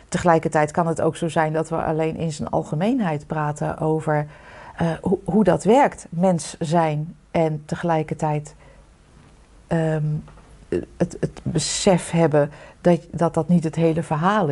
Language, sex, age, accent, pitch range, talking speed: Dutch, female, 40-59, Dutch, 155-190 Hz, 135 wpm